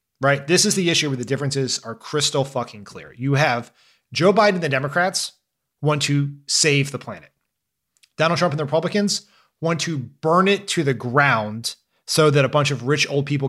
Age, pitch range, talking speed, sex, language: 30-49, 130-160 Hz, 195 wpm, male, English